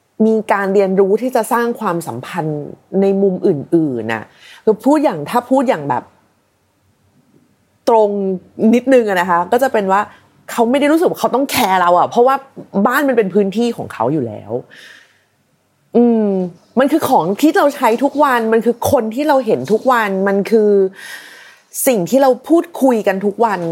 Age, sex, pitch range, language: 30-49, female, 180-240 Hz, Thai